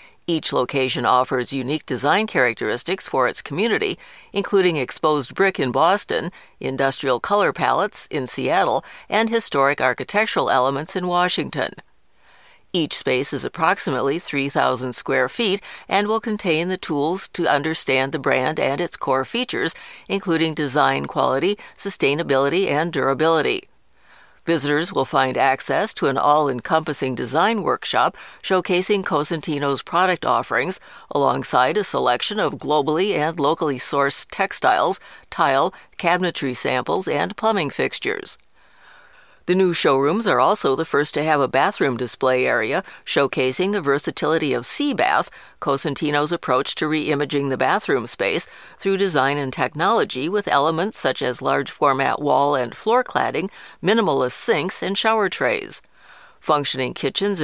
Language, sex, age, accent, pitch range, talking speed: English, female, 60-79, American, 135-195 Hz, 130 wpm